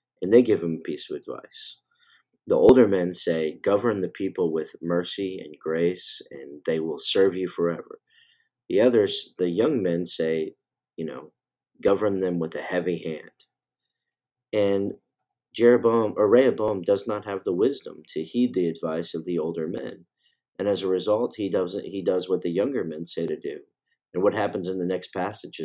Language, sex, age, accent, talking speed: English, male, 40-59, American, 180 wpm